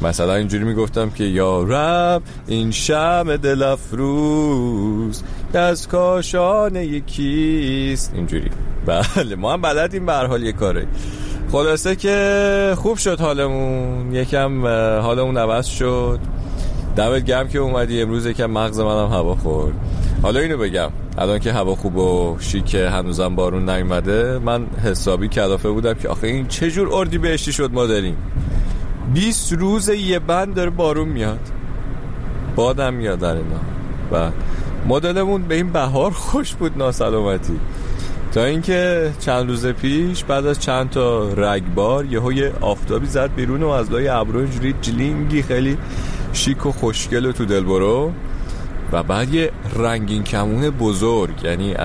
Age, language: 30-49, Persian